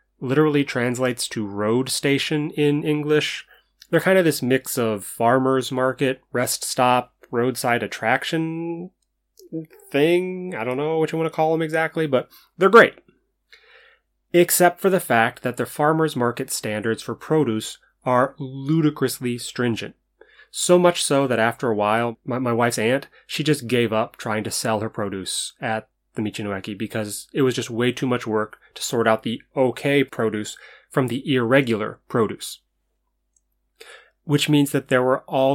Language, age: English, 30-49